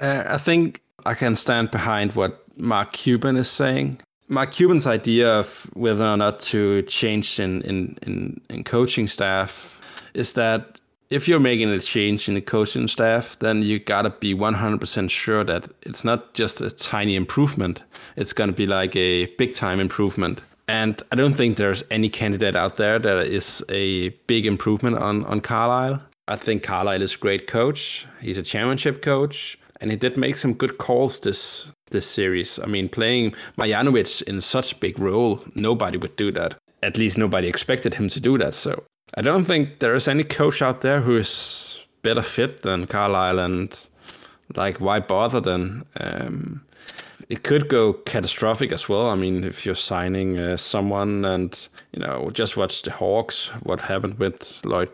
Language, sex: English, male